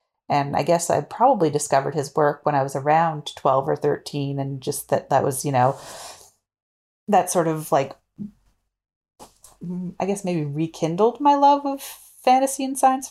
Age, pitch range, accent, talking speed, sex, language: 30-49, 145-170 Hz, American, 165 wpm, female, English